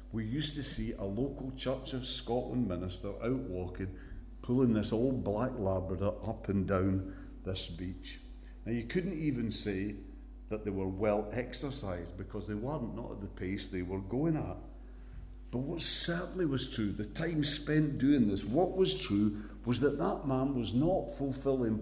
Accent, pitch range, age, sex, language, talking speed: British, 95-130 Hz, 50-69, male, English, 175 wpm